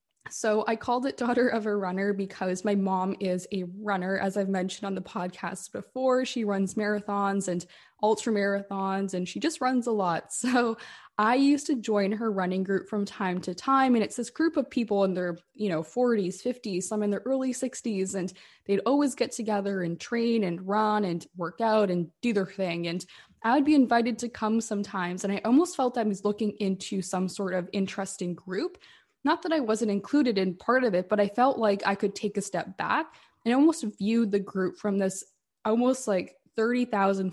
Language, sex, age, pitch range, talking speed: English, female, 20-39, 190-235 Hz, 205 wpm